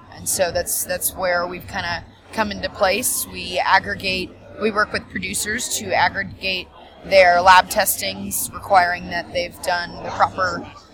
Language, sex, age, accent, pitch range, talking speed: English, female, 20-39, American, 175-195 Hz, 150 wpm